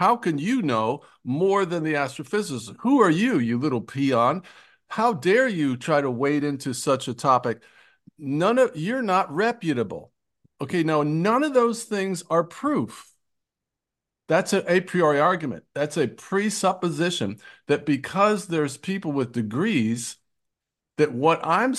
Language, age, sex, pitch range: English, 50-69, male, 140-185 Hz